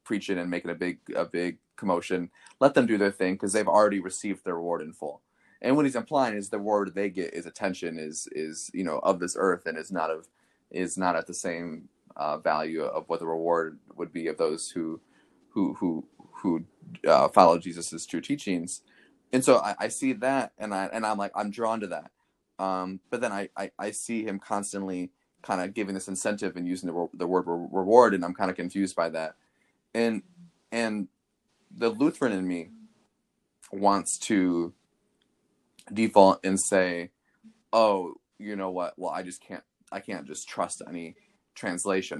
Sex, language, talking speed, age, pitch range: male, English, 195 wpm, 20-39, 85-110 Hz